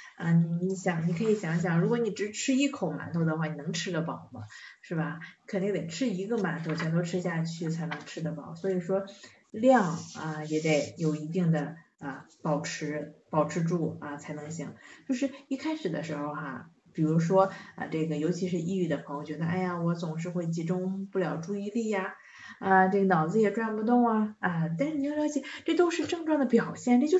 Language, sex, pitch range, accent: Chinese, female, 165-235 Hz, native